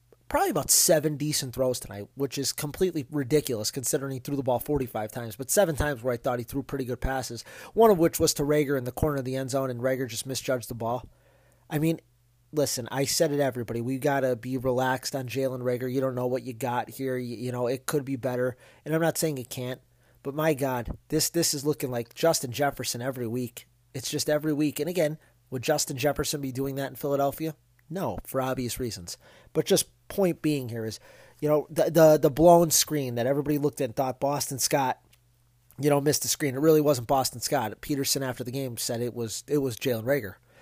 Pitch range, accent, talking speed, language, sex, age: 125-150 Hz, American, 230 wpm, English, male, 30-49